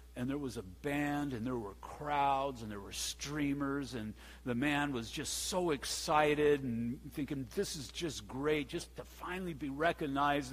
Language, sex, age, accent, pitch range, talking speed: English, male, 60-79, American, 110-160 Hz, 175 wpm